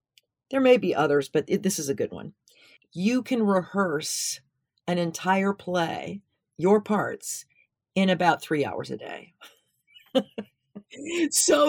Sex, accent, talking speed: female, American, 130 wpm